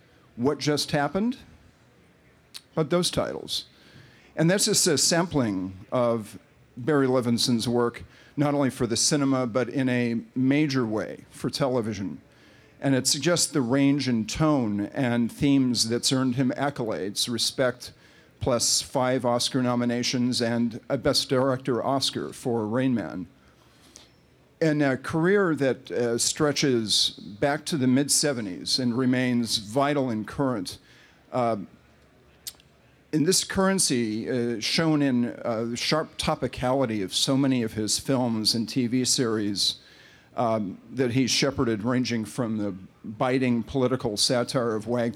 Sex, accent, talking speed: male, American, 135 wpm